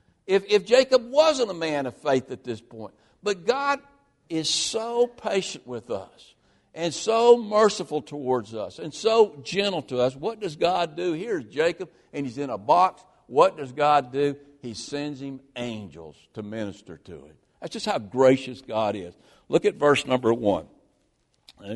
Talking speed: 175 wpm